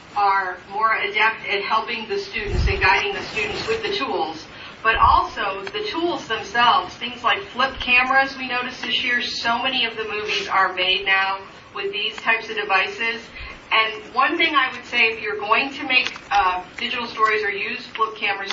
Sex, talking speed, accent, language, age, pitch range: female, 190 wpm, American, English, 40-59, 185-255 Hz